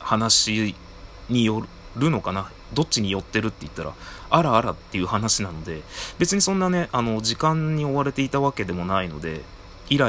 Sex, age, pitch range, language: male, 30-49, 90-120 Hz, Japanese